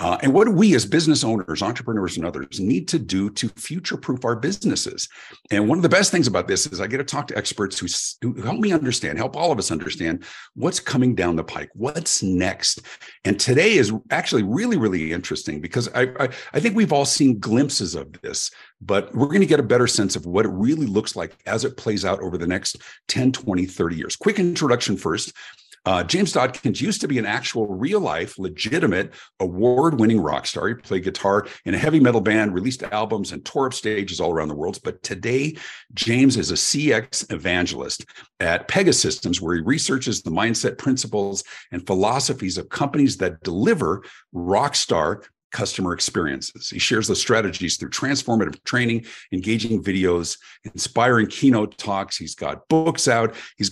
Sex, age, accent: male, 50-69, American